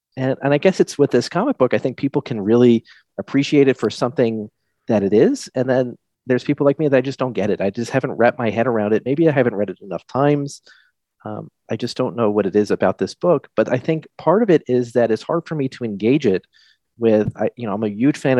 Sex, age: male, 40-59